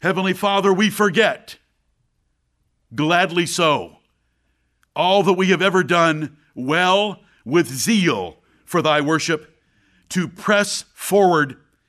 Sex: male